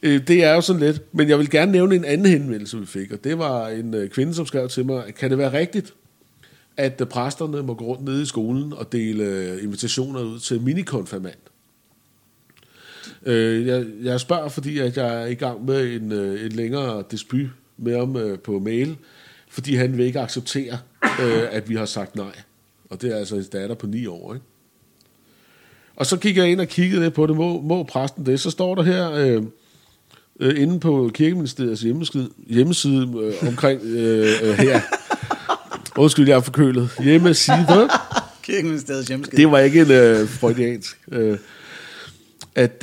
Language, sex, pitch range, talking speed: Danish, male, 115-150 Hz, 160 wpm